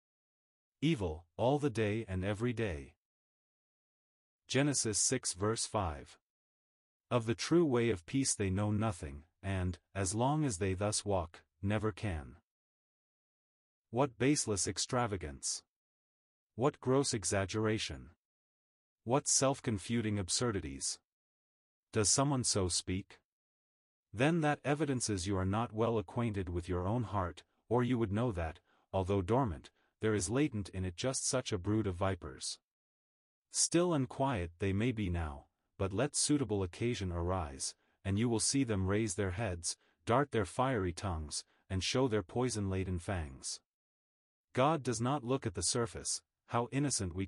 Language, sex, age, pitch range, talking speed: English, male, 40-59, 90-120 Hz, 140 wpm